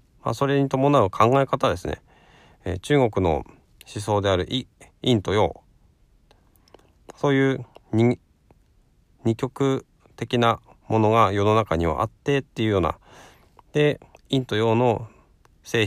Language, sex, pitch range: Japanese, male, 95-130 Hz